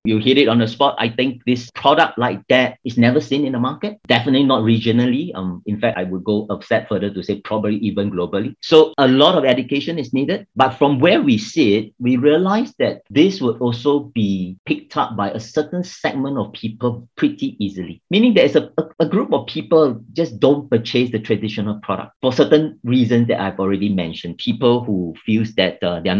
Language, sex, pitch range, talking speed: English, male, 105-140 Hz, 210 wpm